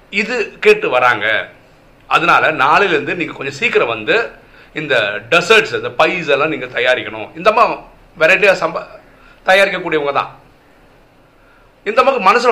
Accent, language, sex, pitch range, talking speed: native, Tamil, male, 140-210 Hz, 75 wpm